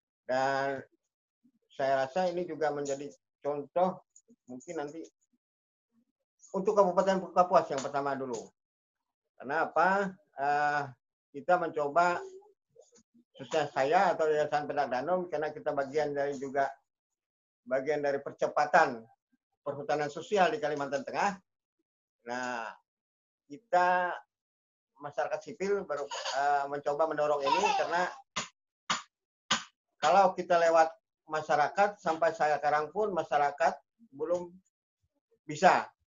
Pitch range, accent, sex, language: 135-185 Hz, native, male, Indonesian